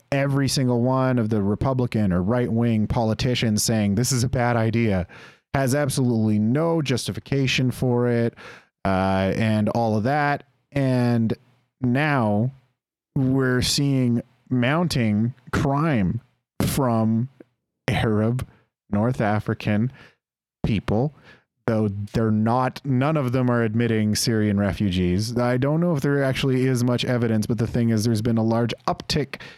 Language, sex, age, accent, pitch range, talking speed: English, male, 30-49, American, 110-135 Hz, 130 wpm